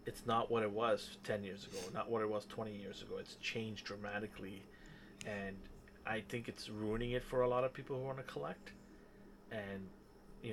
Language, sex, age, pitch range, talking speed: English, male, 30-49, 105-125 Hz, 200 wpm